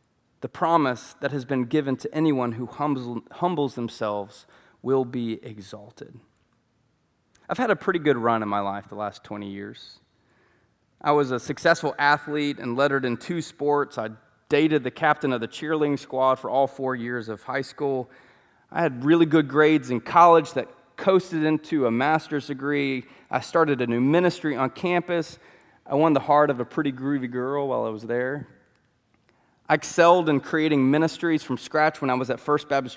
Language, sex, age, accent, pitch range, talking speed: English, male, 30-49, American, 125-155 Hz, 180 wpm